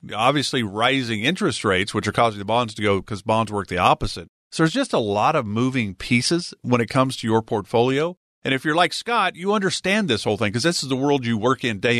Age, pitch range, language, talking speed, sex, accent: 40-59, 115-160 Hz, English, 245 wpm, male, American